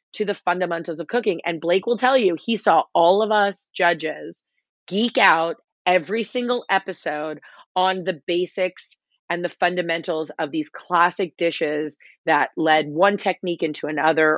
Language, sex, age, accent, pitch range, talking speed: English, female, 30-49, American, 150-180 Hz, 155 wpm